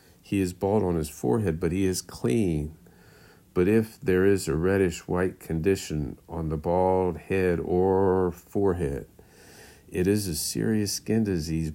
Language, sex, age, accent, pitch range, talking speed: English, male, 50-69, American, 85-100 Hz, 150 wpm